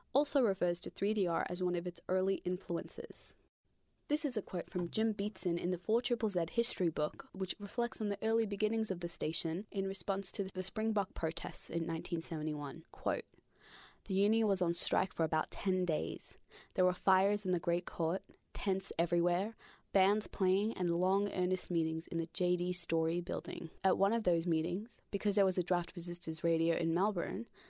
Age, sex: 20-39, female